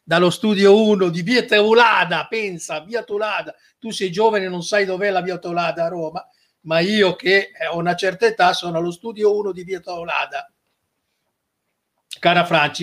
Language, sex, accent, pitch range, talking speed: Italian, male, native, 165-215 Hz, 170 wpm